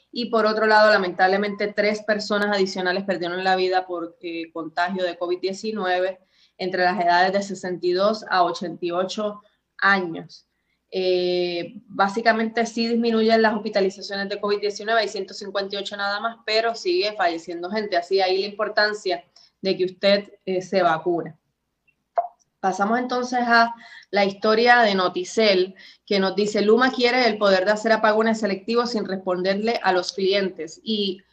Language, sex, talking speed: Spanish, female, 140 wpm